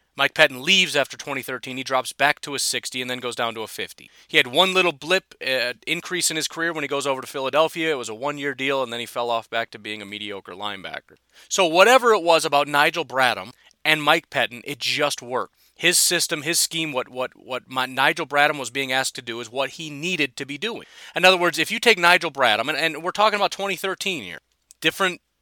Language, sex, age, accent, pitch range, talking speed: English, male, 30-49, American, 115-160 Hz, 240 wpm